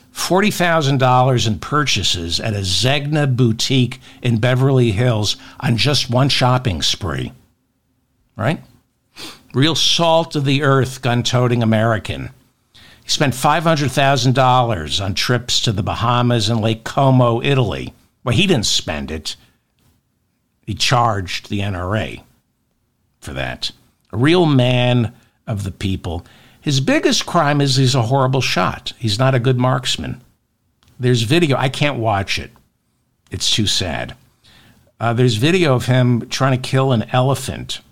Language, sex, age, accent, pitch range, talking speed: English, male, 60-79, American, 110-135 Hz, 125 wpm